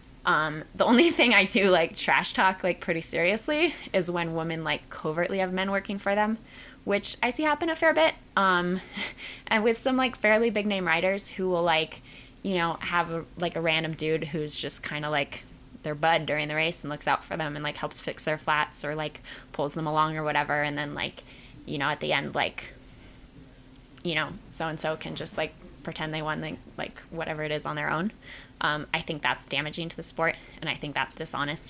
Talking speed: 215 wpm